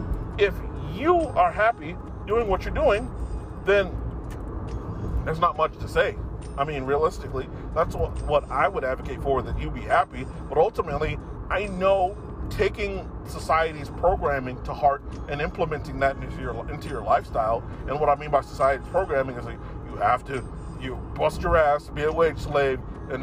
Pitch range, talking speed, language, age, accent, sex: 120-145 Hz, 170 wpm, English, 40-59, American, male